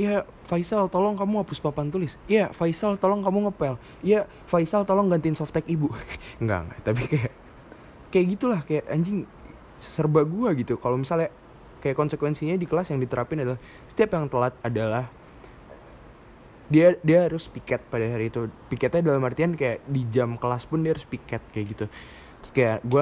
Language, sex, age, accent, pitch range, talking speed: Indonesian, male, 20-39, native, 120-165 Hz, 170 wpm